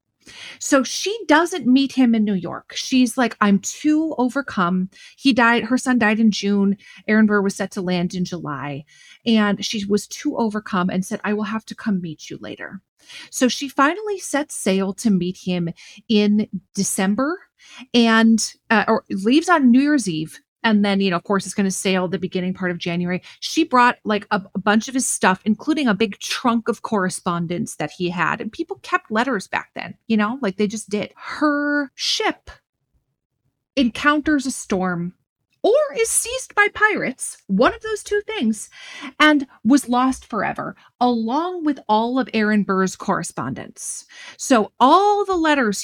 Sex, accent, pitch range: female, American, 200-275 Hz